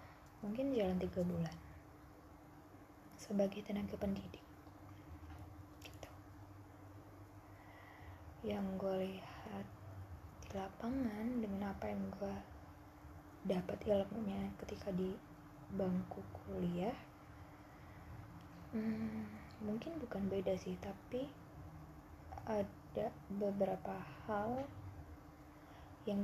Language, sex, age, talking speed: Indonesian, female, 20-39, 75 wpm